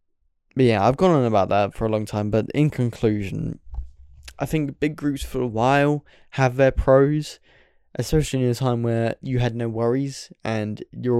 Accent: British